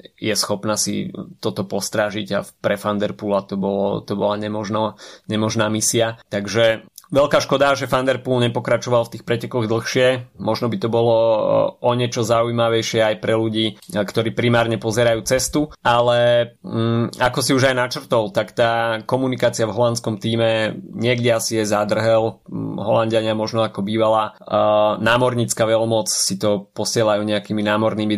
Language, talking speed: Slovak, 145 wpm